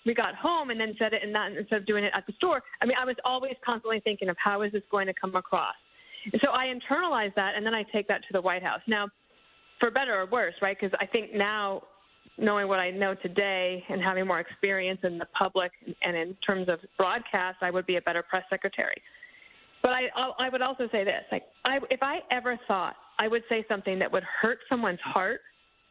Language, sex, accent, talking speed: English, female, American, 235 wpm